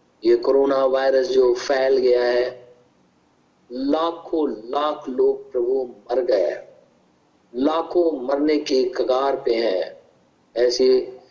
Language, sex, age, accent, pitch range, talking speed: Hindi, male, 50-69, native, 125-165 Hz, 100 wpm